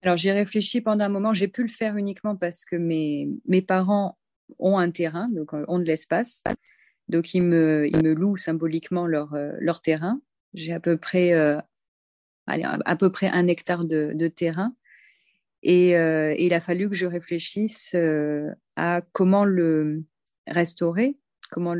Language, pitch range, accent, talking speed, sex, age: French, 160-195 Hz, French, 170 wpm, female, 30-49